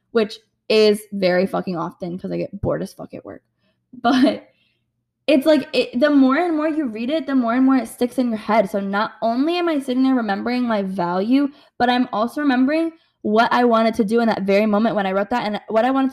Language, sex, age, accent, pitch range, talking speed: English, female, 10-29, American, 205-255 Hz, 235 wpm